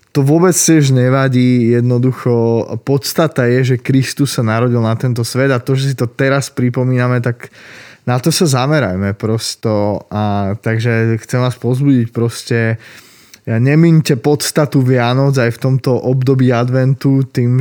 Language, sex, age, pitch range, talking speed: Slovak, male, 20-39, 115-140 Hz, 145 wpm